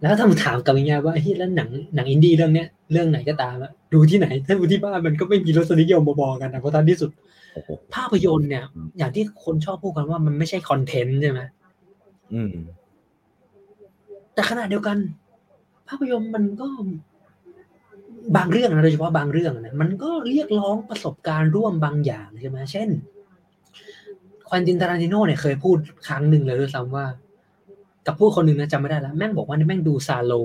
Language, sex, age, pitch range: Thai, male, 20-39, 140-190 Hz